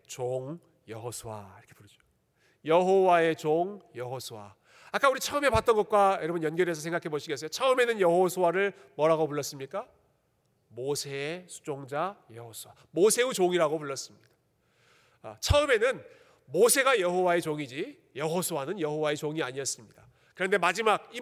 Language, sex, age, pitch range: Korean, male, 40-59, 145-215 Hz